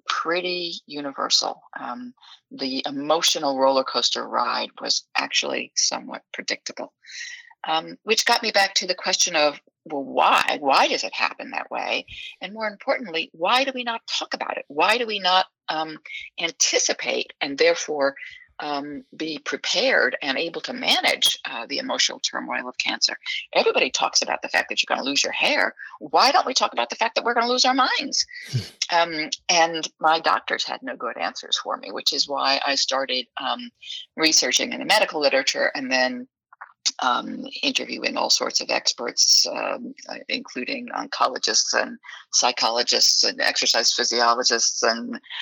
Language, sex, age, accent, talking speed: English, female, 50-69, American, 165 wpm